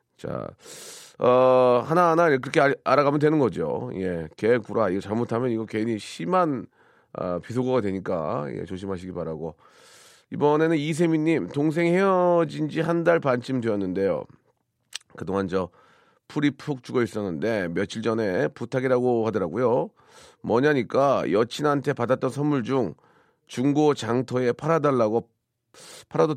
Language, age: Korean, 40-59